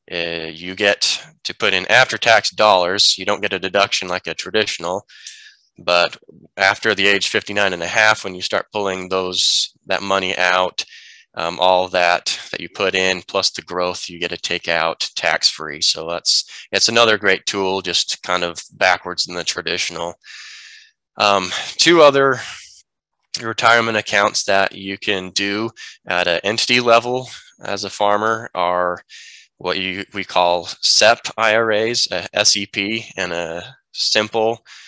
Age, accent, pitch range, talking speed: 20-39, American, 90-110 Hz, 155 wpm